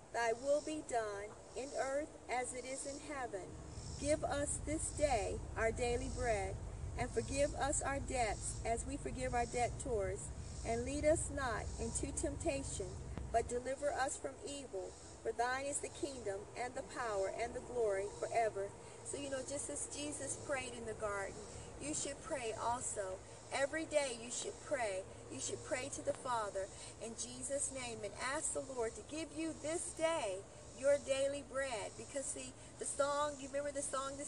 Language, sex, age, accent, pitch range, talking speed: English, female, 40-59, American, 230-285 Hz, 175 wpm